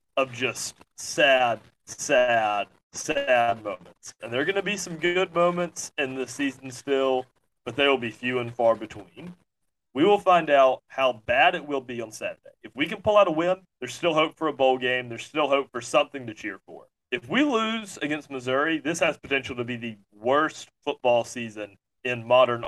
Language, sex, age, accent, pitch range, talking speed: English, male, 30-49, American, 120-155 Hz, 200 wpm